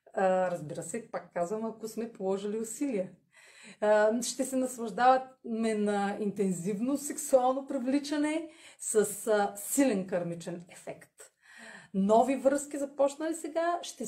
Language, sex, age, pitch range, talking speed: Bulgarian, female, 30-49, 185-260 Hz, 100 wpm